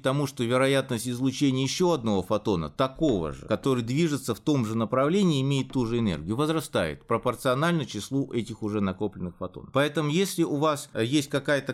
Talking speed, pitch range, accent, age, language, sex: 165 wpm, 110-145 Hz, native, 20-39, Russian, male